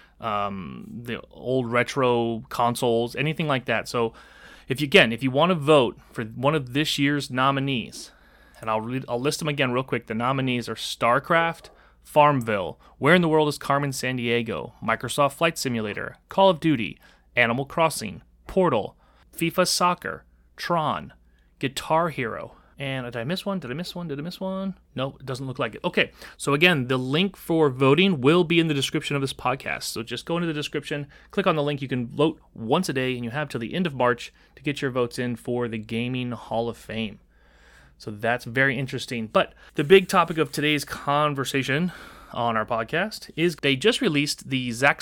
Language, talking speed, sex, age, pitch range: English, 195 wpm, male, 30-49, 120-150 Hz